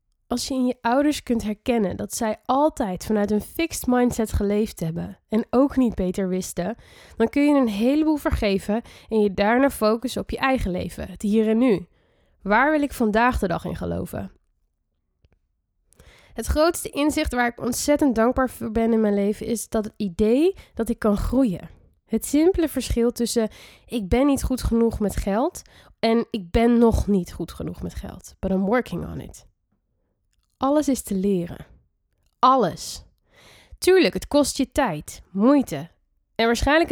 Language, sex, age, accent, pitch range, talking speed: Dutch, female, 10-29, Dutch, 190-255 Hz, 170 wpm